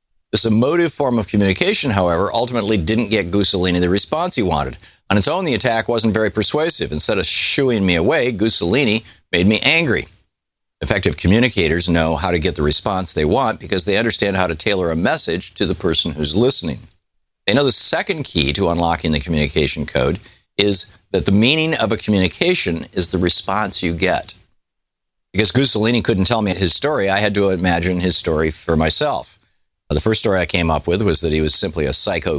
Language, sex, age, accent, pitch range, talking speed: English, male, 50-69, American, 85-110 Hz, 195 wpm